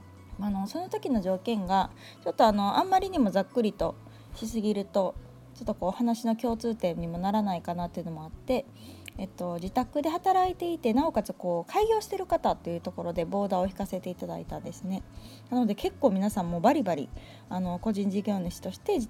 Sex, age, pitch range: female, 20-39, 175-225 Hz